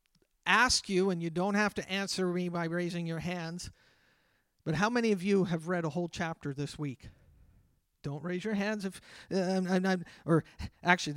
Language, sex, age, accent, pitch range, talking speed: English, male, 40-59, American, 165-195 Hz, 190 wpm